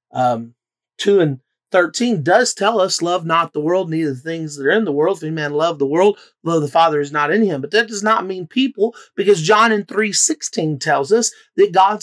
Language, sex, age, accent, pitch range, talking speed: English, male, 30-49, American, 150-220 Hz, 235 wpm